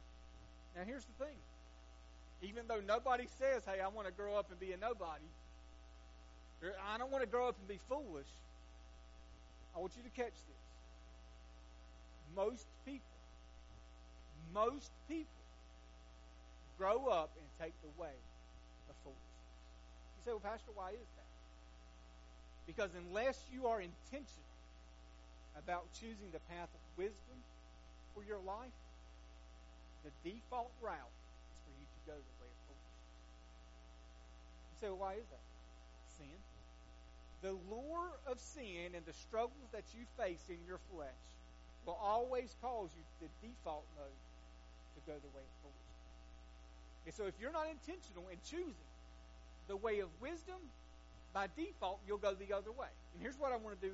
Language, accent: English, American